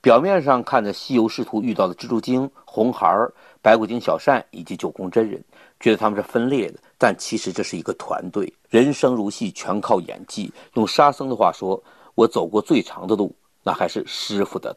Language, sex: Chinese, male